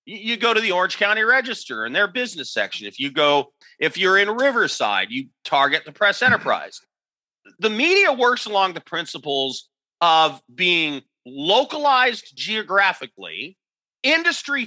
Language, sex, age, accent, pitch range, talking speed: English, male, 40-59, American, 170-240 Hz, 140 wpm